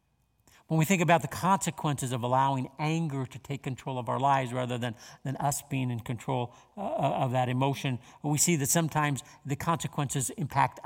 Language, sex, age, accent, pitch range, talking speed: English, male, 50-69, American, 130-165 Hz, 180 wpm